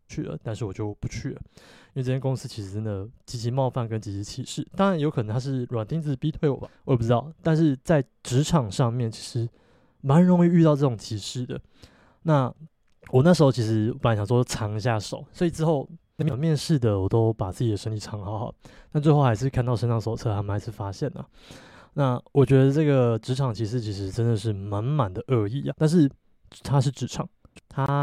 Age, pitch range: 20-39, 110-140 Hz